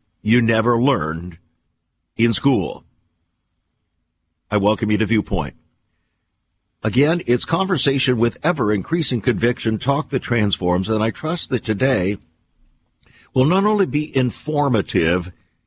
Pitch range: 95-150 Hz